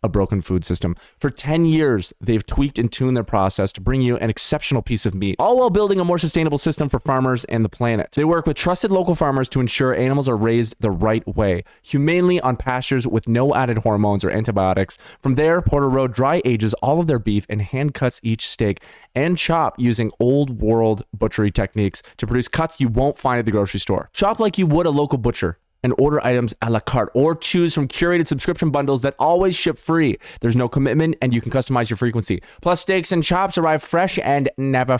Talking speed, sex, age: 220 wpm, male, 20-39